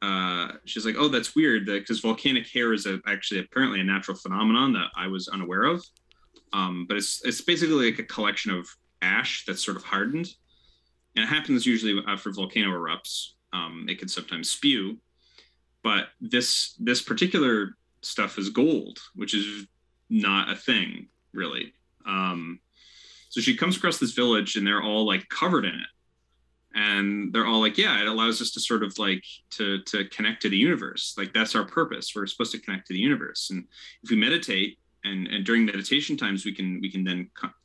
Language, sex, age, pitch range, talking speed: English, male, 30-49, 90-115 Hz, 185 wpm